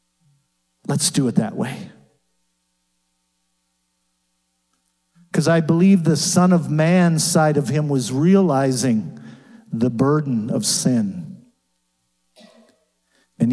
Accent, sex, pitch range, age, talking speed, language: American, male, 115-185 Hz, 50-69, 100 wpm, English